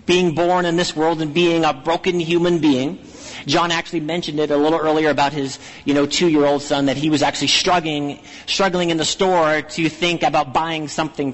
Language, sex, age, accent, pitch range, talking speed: English, male, 40-59, American, 140-170 Hz, 210 wpm